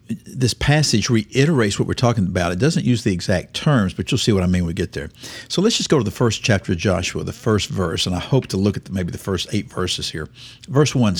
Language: English